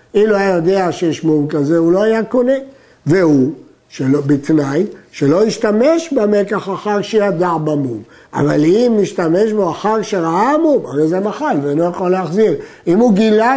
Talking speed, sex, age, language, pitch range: 160 wpm, male, 60-79, Hebrew, 165-240 Hz